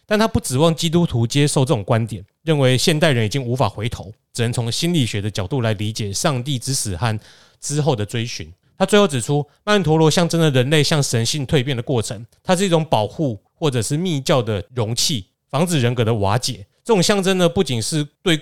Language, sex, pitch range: Chinese, male, 115-160 Hz